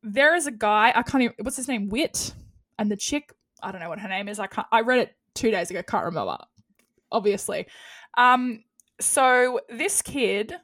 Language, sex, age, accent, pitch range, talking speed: English, female, 10-29, Australian, 215-280 Hz, 205 wpm